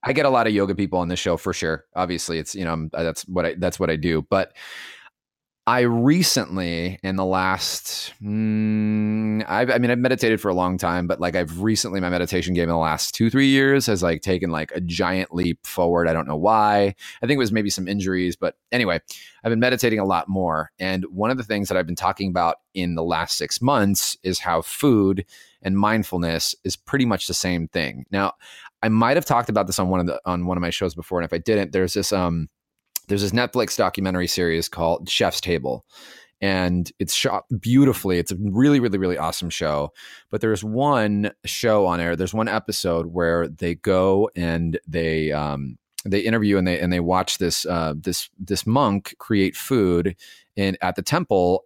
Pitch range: 85-105 Hz